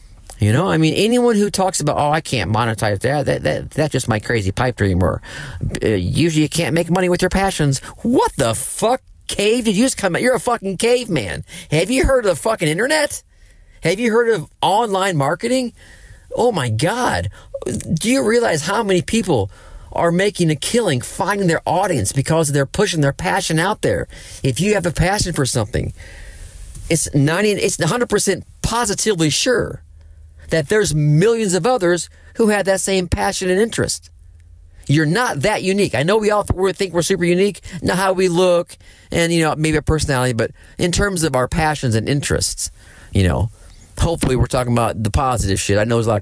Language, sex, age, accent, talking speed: English, male, 50-69, American, 195 wpm